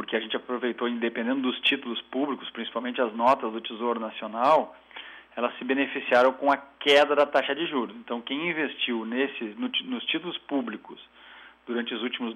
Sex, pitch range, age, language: male, 120-155 Hz, 40-59, Portuguese